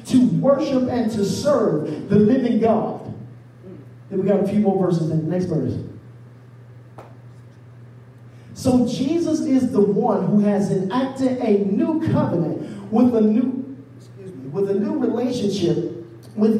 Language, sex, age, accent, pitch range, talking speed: English, male, 40-59, American, 180-255 Hz, 145 wpm